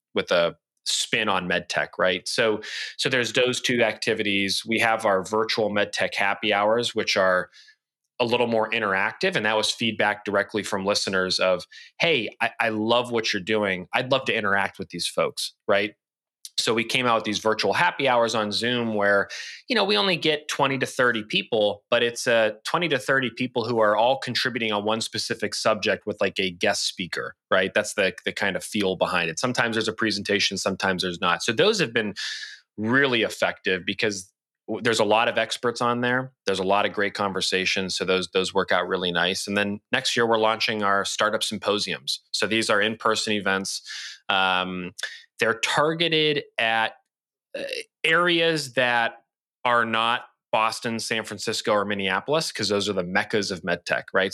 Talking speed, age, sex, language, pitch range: 190 wpm, 30-49, male, English, 100-120 Hz